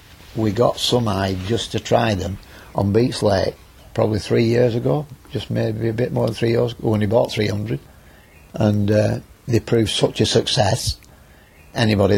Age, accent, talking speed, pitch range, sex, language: 60-79, British, 175 wpm, 95-115 Hz, male, English